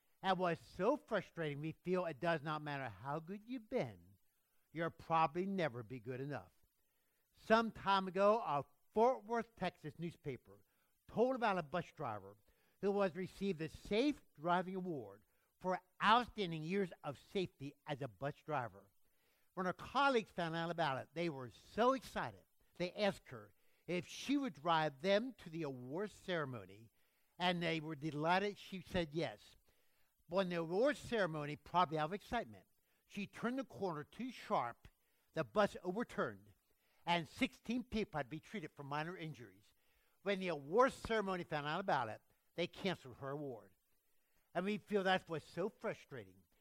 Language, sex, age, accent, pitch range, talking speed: English, male, 60-79, American, 140-195 Hz, 160 wpm